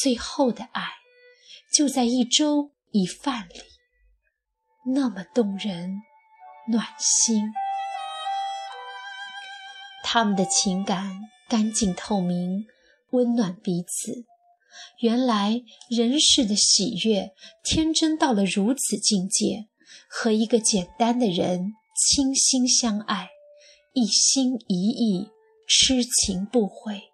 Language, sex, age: Chinese, female, 20-39